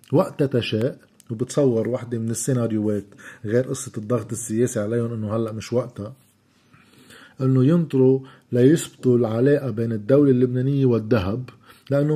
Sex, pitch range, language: male, 115-135 Hz, Arabic